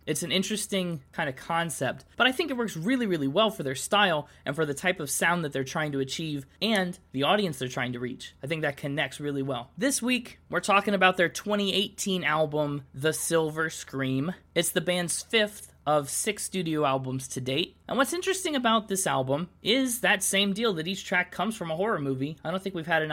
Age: 20-39